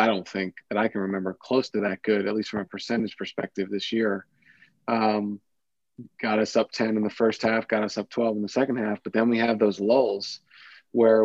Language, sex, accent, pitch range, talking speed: English, male, American, 105-115 Hz, 230 wpm